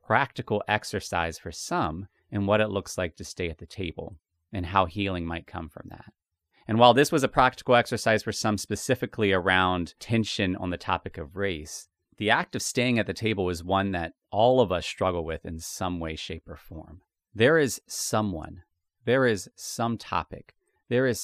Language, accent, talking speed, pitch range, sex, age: English, American, 190 wpm, 85-110 Hz, male, 30-49